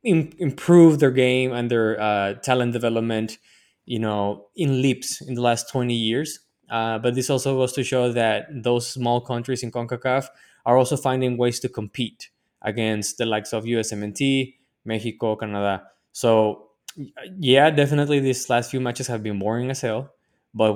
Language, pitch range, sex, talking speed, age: English, 110-130 Hz, male, 160 wpm, 20-39